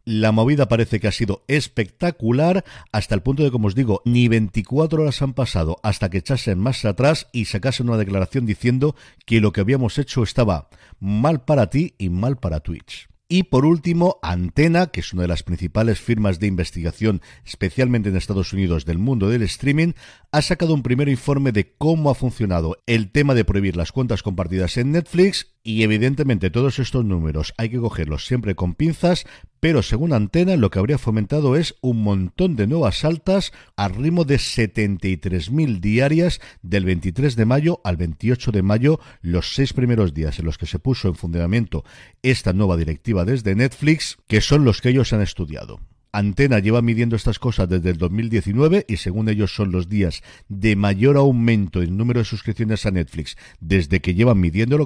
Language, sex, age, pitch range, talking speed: Spanish, male, 50-69, 95-135 Hz, 185 wpm